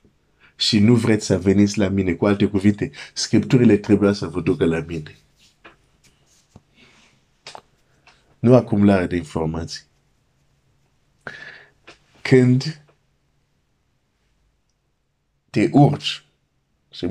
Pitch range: 85-110 Hz